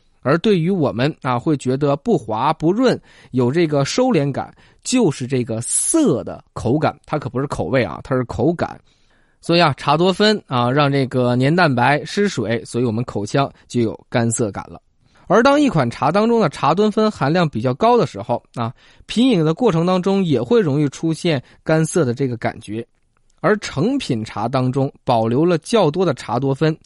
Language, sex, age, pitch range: Chinese, male, 20-39, 120-175 Hz